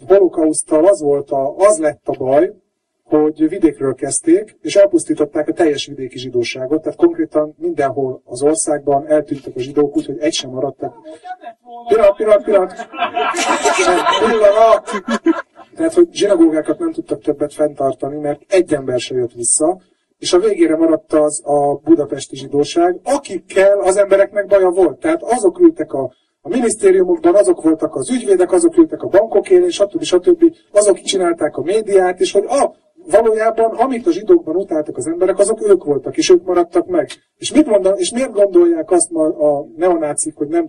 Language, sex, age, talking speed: Hungarian, male, 30-49, 160 wpm